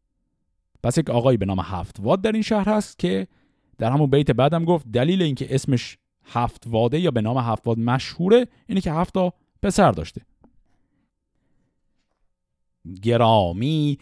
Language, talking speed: Persian, 135 wpm